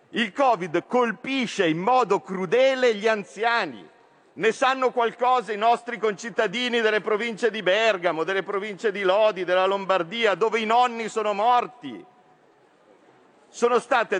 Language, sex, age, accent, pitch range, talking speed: Italian, male, 50-69, native, 205-255 Hz, 130 wpm